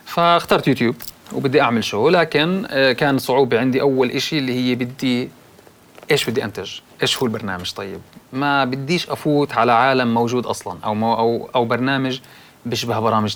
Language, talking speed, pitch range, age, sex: Arabic, 155 wpm, 120-145 Hz, 30-49, male